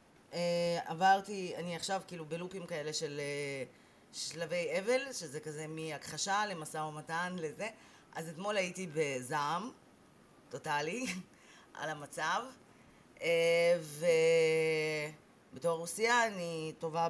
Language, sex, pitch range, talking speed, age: Hebrew, female, 155-195 Hz, 100 wpm, 30-49